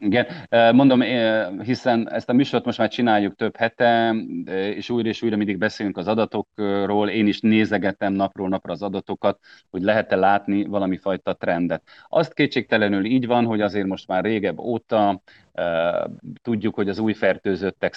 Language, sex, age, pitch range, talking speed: Hungarian, male, 30-49, 100-115 Hz, 155 wpm